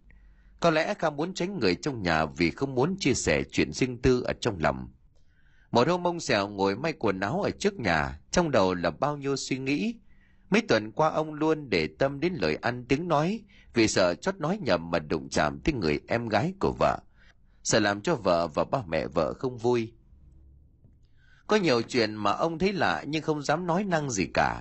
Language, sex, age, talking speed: Vietnamese, male, 30-49, 210 wpm